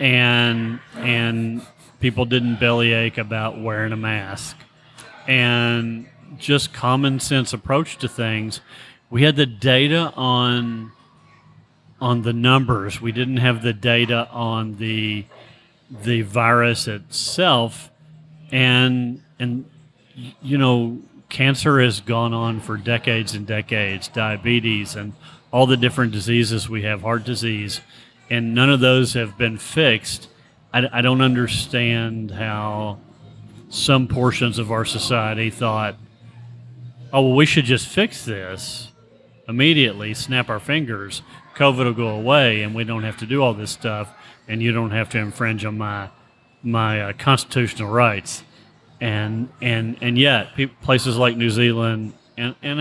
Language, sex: English, male